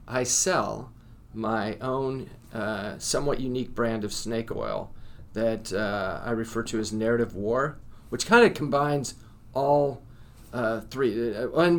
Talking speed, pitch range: 135 wpm, 110-125 Hz